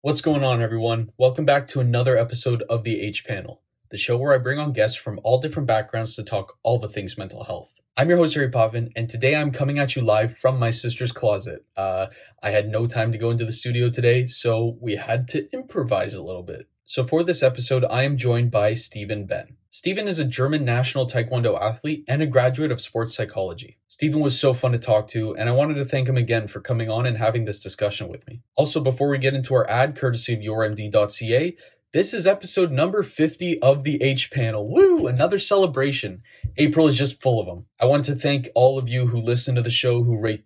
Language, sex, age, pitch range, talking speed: English, male, 20-39, 110-135 Hz, 225 wpm